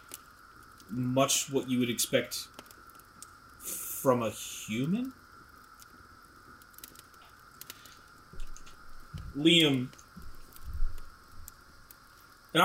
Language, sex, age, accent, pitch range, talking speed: English, male, 30-49, American, 115-135 Hz, 45 wpm